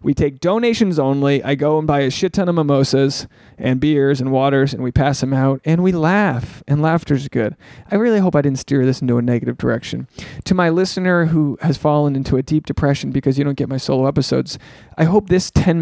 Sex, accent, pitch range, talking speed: male, American, 140-190 Hz, 230 wpm